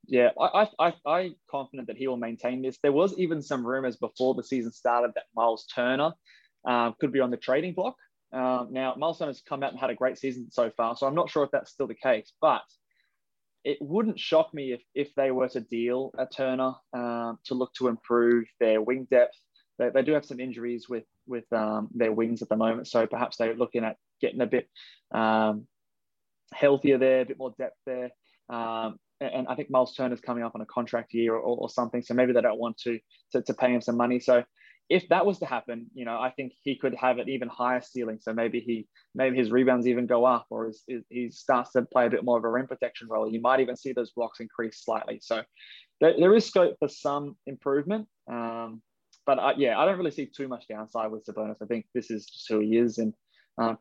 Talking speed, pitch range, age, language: 235 wpm, 115-135 Hz, 20-39, English